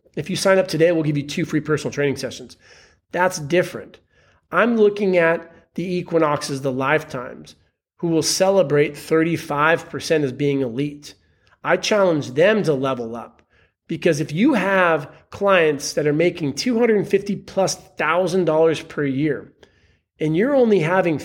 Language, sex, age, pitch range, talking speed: English, male, 40-59, 140-190 Hz, 145 wpm